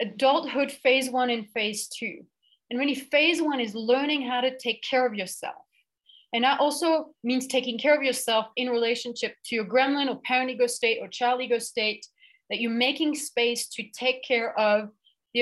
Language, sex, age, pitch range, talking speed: English, female, 30-49, 225-275 Hz, 185 wpm